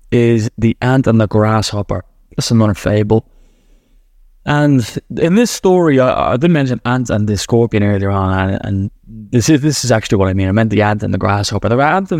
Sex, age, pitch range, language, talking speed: male, 10-29, 110-130 Hz, English, 210 wpm